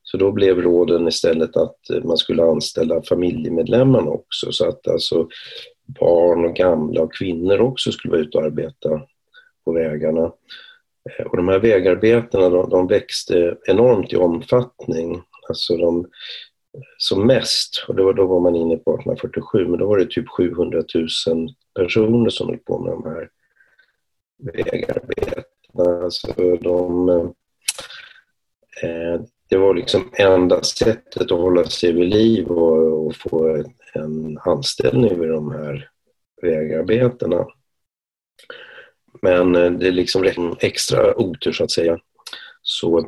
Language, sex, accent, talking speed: Swedish, male, native, 135 wpm